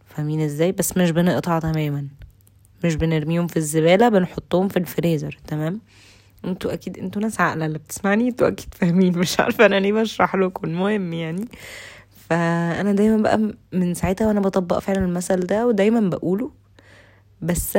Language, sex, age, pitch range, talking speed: Arabic, female, 20-39, 145-185 Hz, 150 wpm